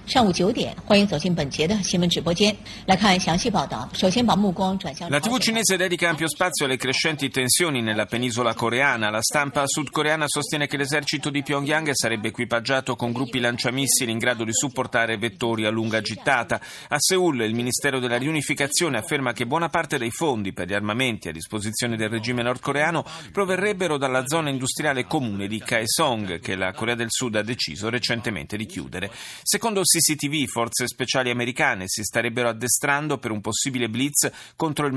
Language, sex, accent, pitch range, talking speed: Italian, male, native, 115-150 Hz, 140 wpm